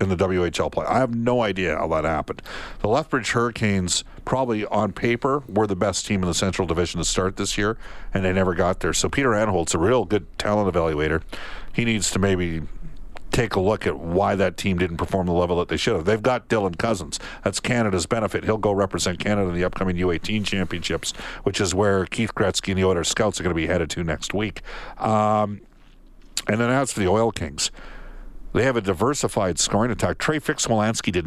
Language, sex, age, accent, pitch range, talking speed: English, male, 50-69, American, 90-110 Hz, 215 wpm